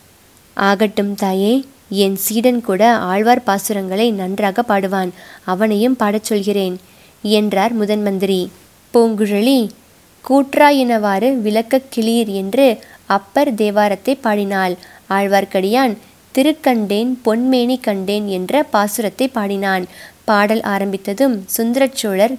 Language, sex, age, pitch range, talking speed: Tamil, female, 20-39, 195-245 Hz, 85 wpm